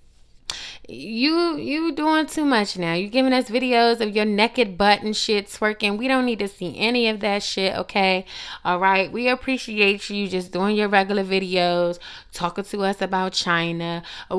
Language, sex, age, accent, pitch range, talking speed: English, female, 20-39, American, 180-250 Hz, 180 wpm